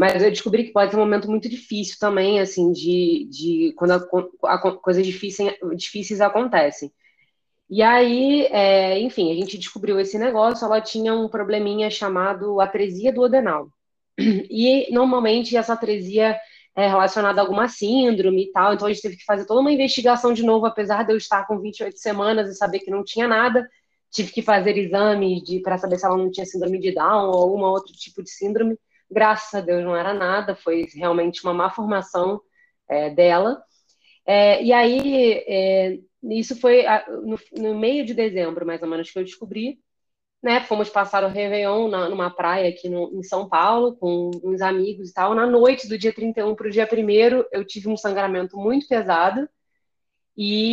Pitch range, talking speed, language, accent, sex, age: 190-230 Hz, 185 wpm, Portuguese, Brazilian, female, 20-39